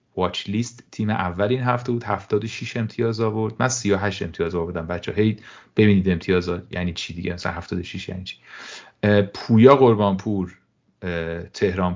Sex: male